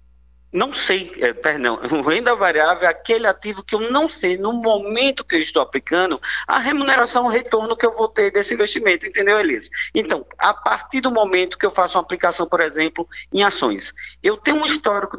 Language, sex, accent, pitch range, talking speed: Portuguese, male, Brazilian, 150-235 Hz, 190 wpm